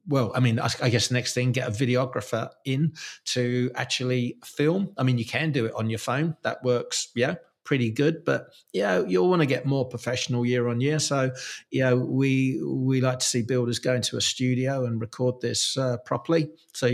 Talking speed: 215 wpm